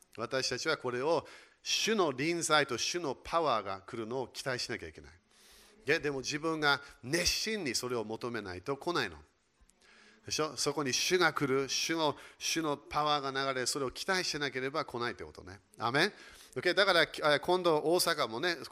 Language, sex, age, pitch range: Japanese, male, 40-59, 130-160 Hz